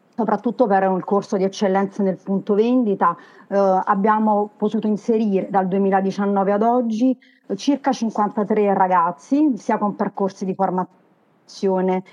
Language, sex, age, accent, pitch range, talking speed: Italian, female, 40-59, native, 195-235 Hz, 125 wpm